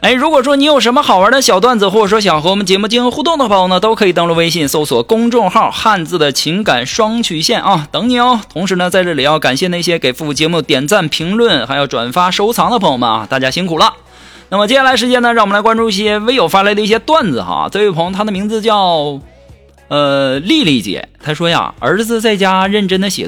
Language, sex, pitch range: Chinese, male, 170-260 Hz